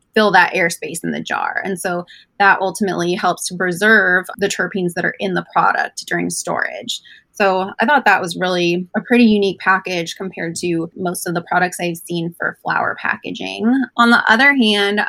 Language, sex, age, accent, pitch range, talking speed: English, female, 20-39, American, 175-205 Hz, 185 wpm